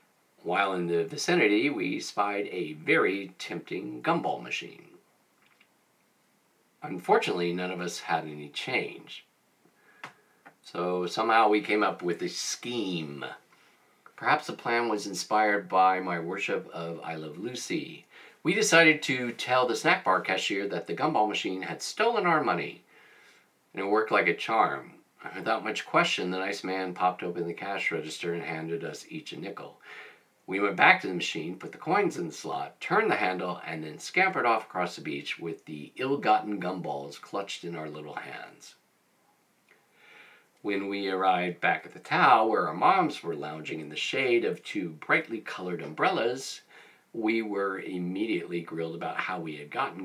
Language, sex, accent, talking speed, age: English, male, American, 165 wpm, 40-59